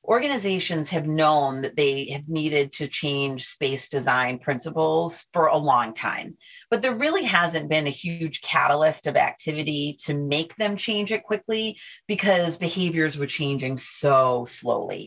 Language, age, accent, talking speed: English, 30-49, American, 150 wpm